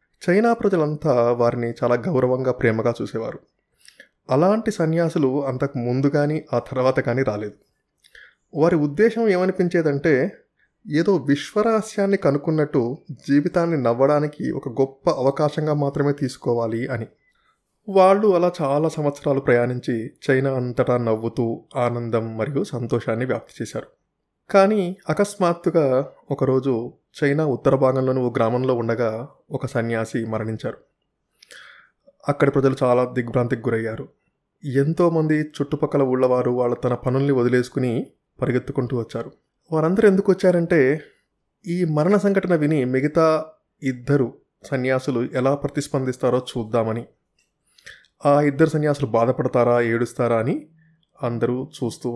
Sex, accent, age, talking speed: male, native, 20-39, 105 wpm